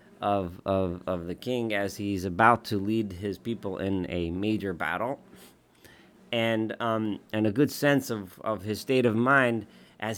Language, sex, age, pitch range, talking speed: English, male, 30-49, 95-120 Hz, 170 wpm